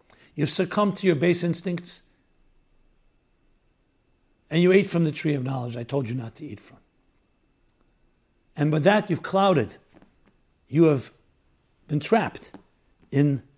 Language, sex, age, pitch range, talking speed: English, male, 60-79, 140-195 Hz, 135 wpm